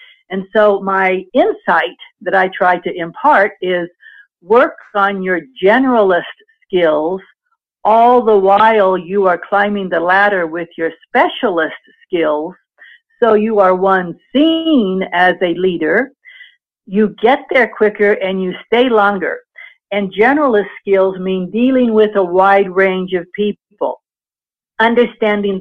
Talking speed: 130 wpm